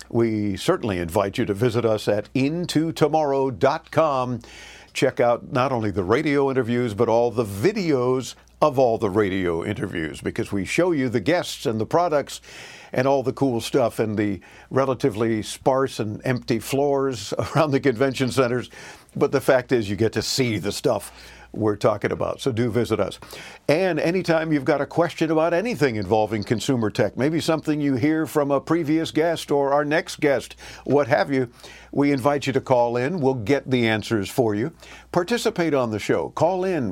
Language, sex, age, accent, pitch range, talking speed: English, male, 50-69, American, 115-145 Hz, 180 wpm